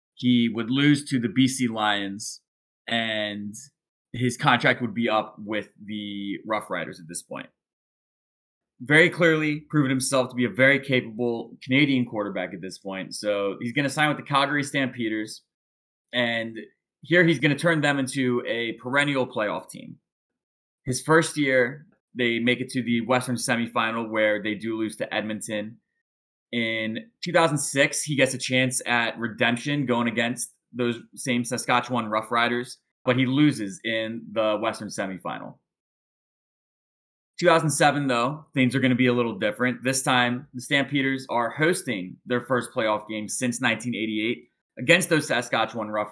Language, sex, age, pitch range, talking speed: English, male, 20-39, 110-135 Hz, 155 wpm